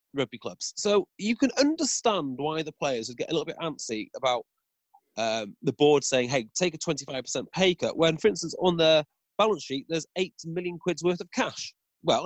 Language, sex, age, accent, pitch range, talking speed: English, male, 30-49, British, 145-195 Hz, 205 wpm